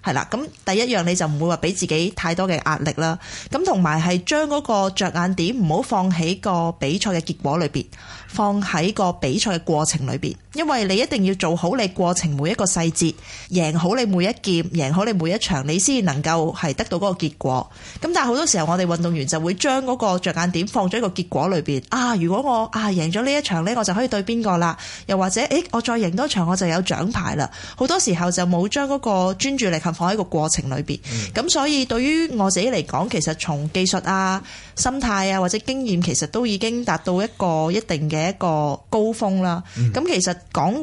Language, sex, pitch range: Chinese, female, 165-215 Hz